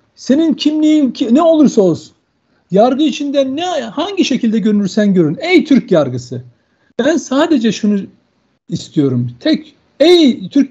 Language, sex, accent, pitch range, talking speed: Turkish, male, native, 190-255 Hz, 130 wpm